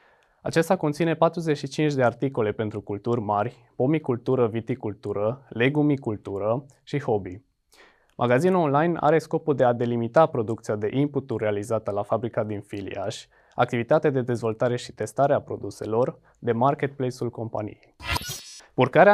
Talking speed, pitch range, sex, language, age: 120 wpm, 110-145 Hz, male, Romanian, 20-39